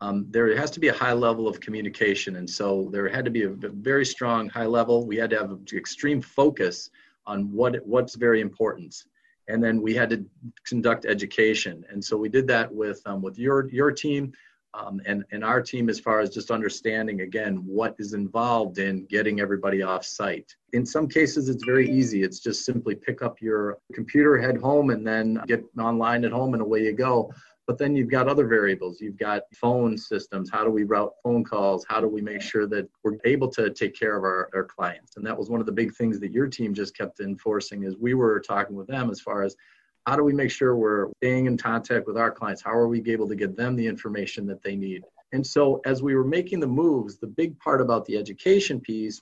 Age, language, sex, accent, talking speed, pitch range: 40-59, English, male, American, 230 wpm, 105-125 Hz